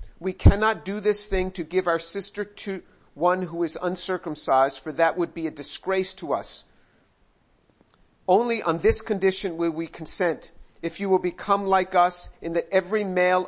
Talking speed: 175 wpm